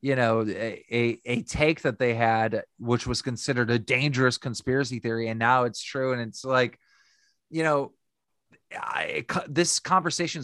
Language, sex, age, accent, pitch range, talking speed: English, male, 30-49, American, 115-145 Hz, 155 wpm